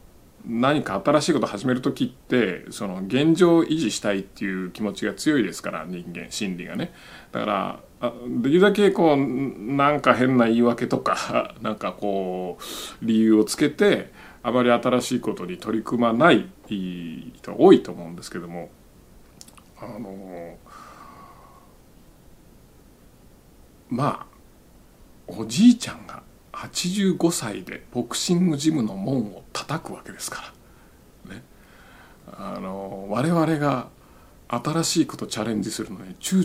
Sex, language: male, Japanese